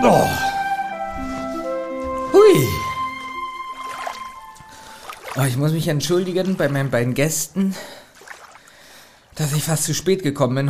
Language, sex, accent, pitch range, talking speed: German, male, German, 115-170 Hz, 95 wpm